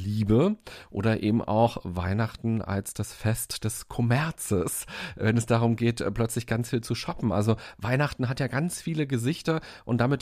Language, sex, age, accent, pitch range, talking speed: German, male, 40-59, German, 110-135 Hz, 165 wpm